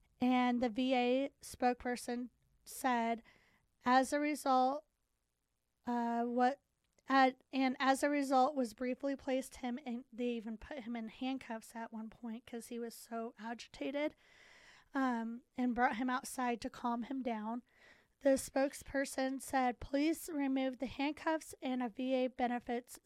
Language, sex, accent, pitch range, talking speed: English, female, American, 240-270 Hz, 140 wpm